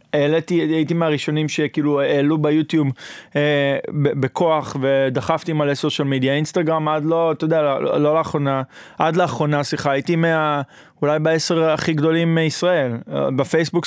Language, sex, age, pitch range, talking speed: Hebrew, male, 20-39, 140-170 Hz, 130 wpm